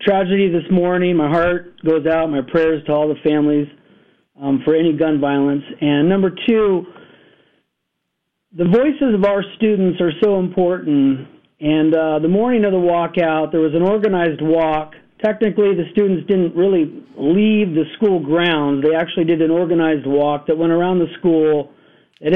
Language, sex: English, male